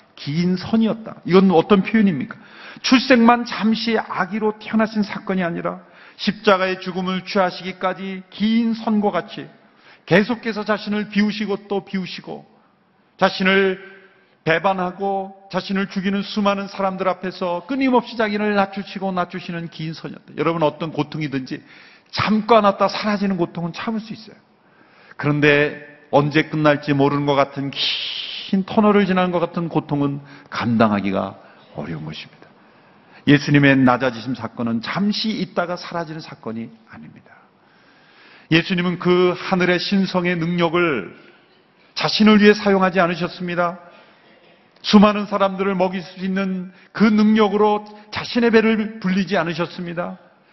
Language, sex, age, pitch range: Korean, male, 40-59, 170-210 Hz